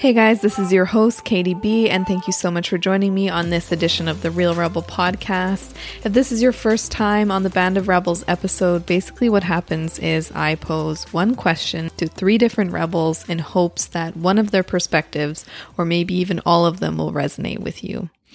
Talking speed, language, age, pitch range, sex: 215 wpm, English, 20-39, 165-205 Hz, female